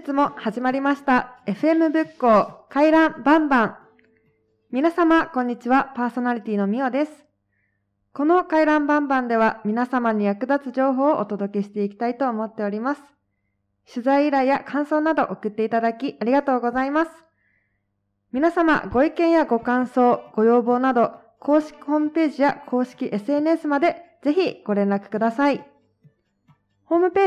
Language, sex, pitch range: Japanese, female, 220-280 Hz